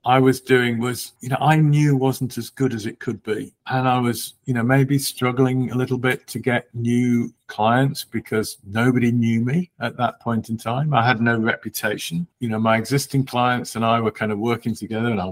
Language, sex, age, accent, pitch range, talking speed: English, male, 50-69, British, 110-130 Hz, 220 wpm